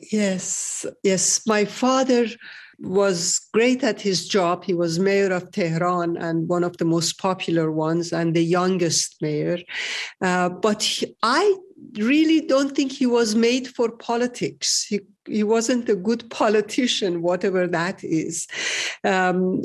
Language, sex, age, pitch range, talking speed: English, female, 50-69, 185-235 Hz, 145 wpm